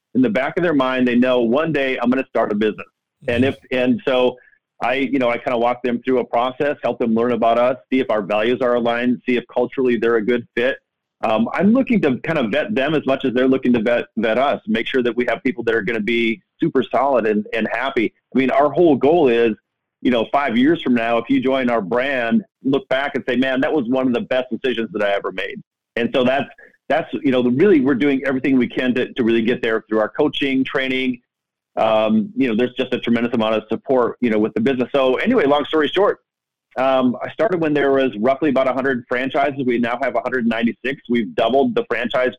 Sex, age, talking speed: male, 40-59, 245 wpm